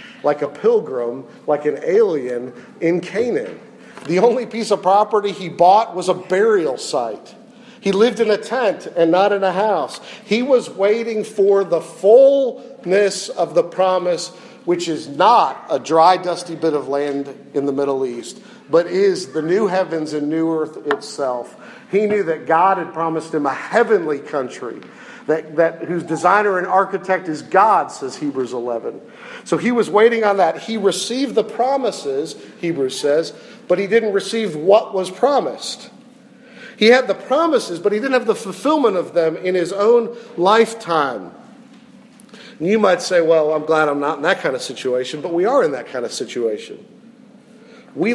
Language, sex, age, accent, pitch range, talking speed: English, male, 50-69, American, 165-235 Hz, 170 wpm